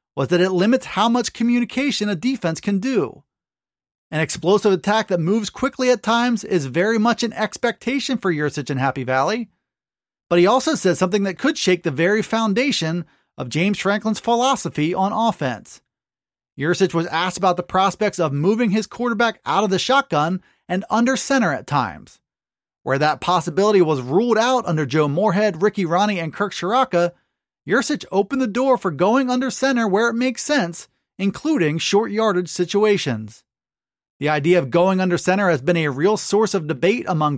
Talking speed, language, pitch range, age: 175 wpm, English, 175-235 Hz, 30-49